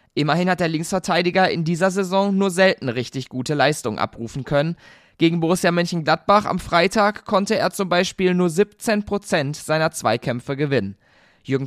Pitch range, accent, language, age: 145-200 Hz, German, German, 20-39